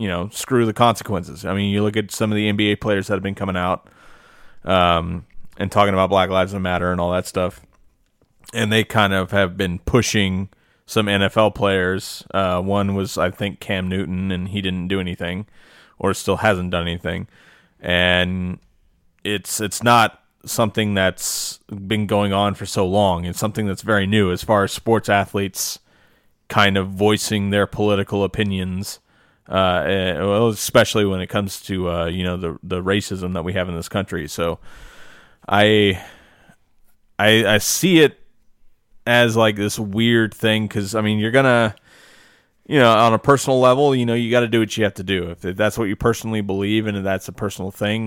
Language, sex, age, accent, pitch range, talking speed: English, male, 20-39, American, 95-110 Hz, 185 wpm